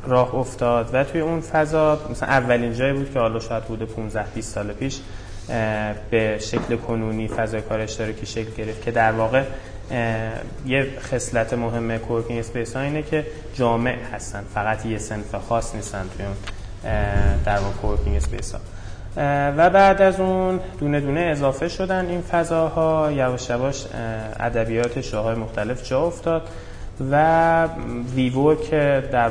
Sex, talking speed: male, 150 wpm